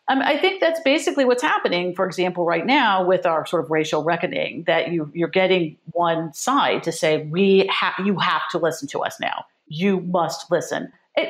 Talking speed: 195 wpm